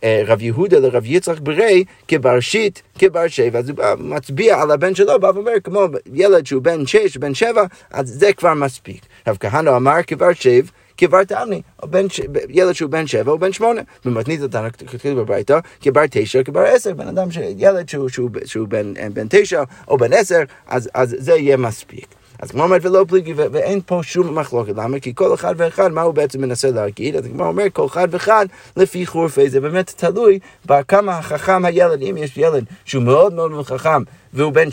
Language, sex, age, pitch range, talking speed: Hebrew, male, 30-49, 130-185 Hz, 180 wpm